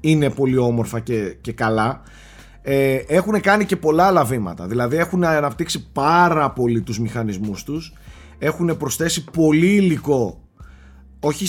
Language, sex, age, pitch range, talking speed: Greek, male, 30-49, 120-180 Hz, 135 wpm